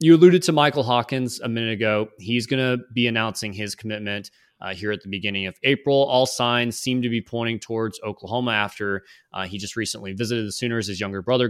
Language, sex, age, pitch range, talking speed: English, male, 20-39, 105-125 Hz, 215 wpm